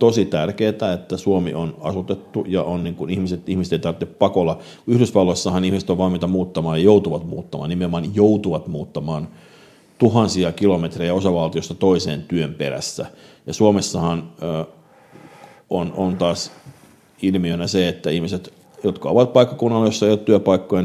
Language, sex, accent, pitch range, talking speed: Finnish, male, native, 90-105 Hz, 140 wpm